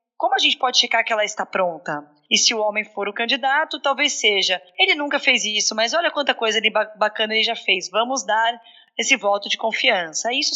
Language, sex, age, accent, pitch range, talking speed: Portuguese, female, 10-29, Brazilian, 210-265 Hz, 210 wpm